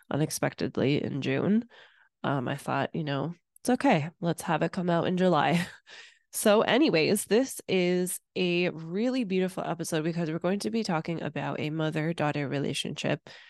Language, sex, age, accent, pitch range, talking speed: English, female, 20-39, American, 155-195 Hz, 160 wpm